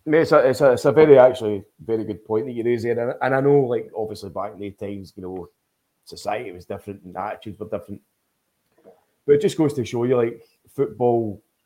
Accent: British